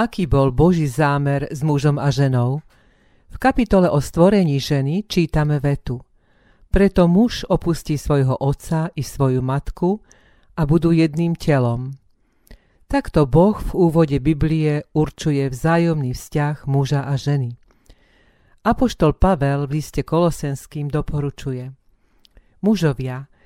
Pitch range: 140-170 Hz